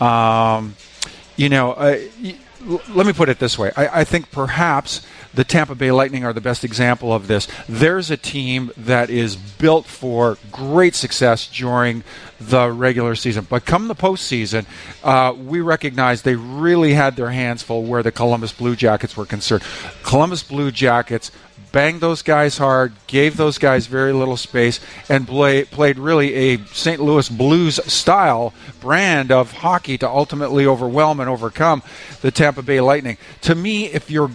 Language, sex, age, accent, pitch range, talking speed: English, male, 50-69, American, 120-150 Hz, 170 wpm